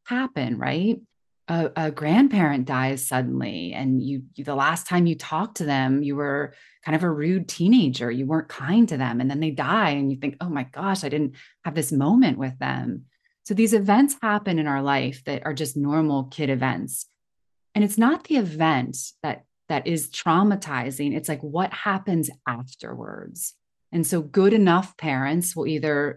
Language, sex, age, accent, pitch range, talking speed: English, female, 30-49, American, 140-175 Hz, 185 wpm